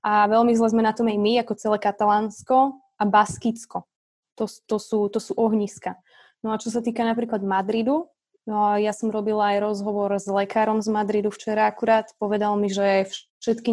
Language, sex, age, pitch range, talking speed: Slovak, female, 20-39, 200-225 Hz, 180 wpm